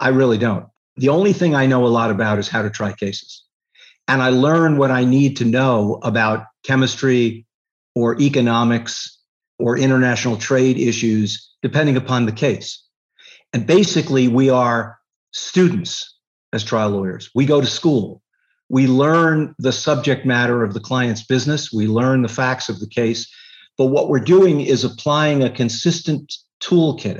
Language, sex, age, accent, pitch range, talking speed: English, male, 50-69, American, 115-140 Hz, 160 wpm